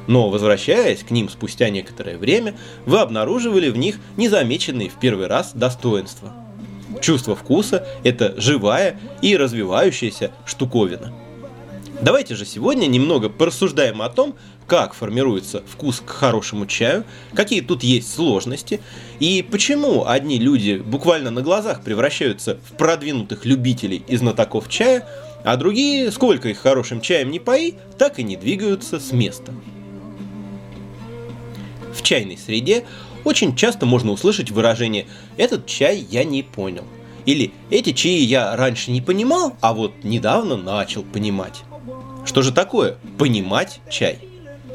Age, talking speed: 20-39, 130 wpm